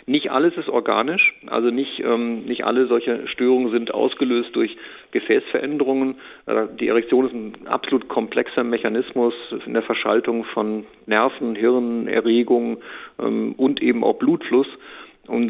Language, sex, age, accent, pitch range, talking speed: German, male, 50-69, German, 110-130 Hz, 130 wpm